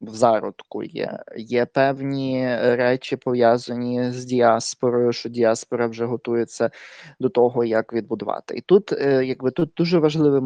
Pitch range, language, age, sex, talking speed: 120-155 Hz, Ukrainian, 20-39, male, 130 wpm